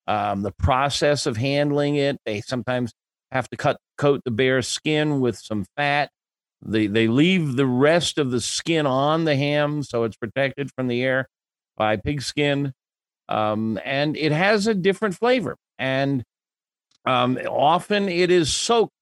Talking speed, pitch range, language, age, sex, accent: 160 wpm, 125-160 Hz, English, 50-69, male, American